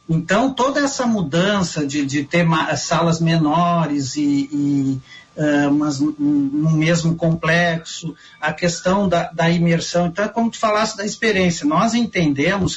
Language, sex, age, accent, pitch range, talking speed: Portuguese, male, 50-69, Brazilian, 155-185 Hz, 130 wpm